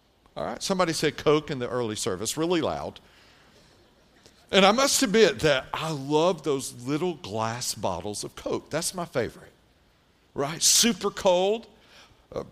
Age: 50-69